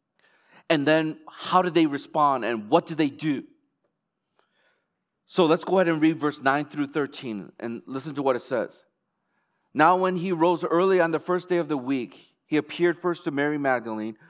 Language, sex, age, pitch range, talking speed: English, male, 40-59, 130-165 Hz, 190 wpm